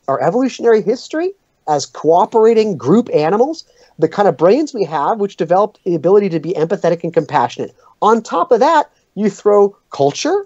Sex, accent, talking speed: male, American, 165 wpm